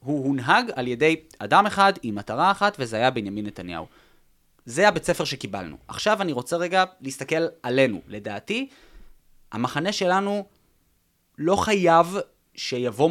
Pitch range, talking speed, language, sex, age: 120-175 Hz, 135 wpm, Hebrew, male, 20-39